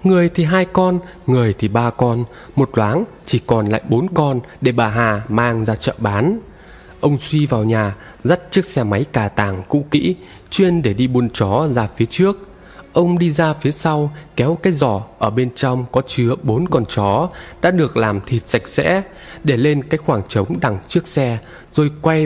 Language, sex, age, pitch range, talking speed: Vietnamese, male, 20-39, 115-160 Hz, 200 wpm